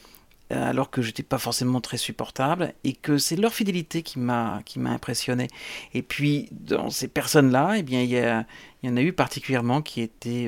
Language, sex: French, male